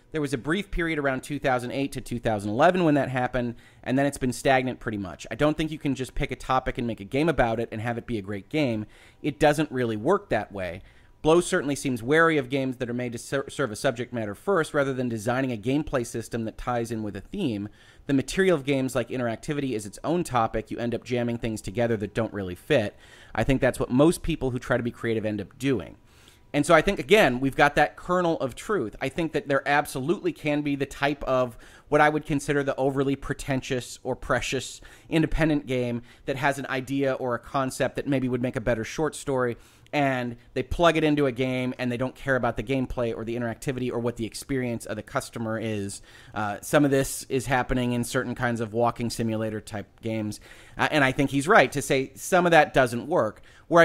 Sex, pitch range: male, 120-145 Hz